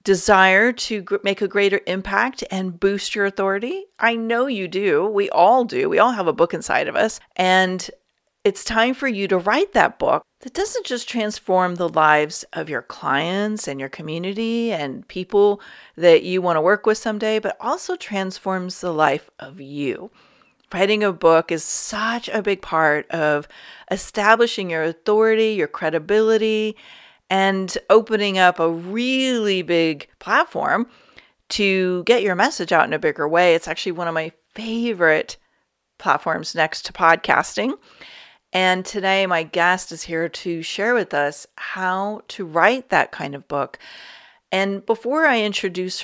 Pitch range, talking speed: 175-220 Hz, 160 wpm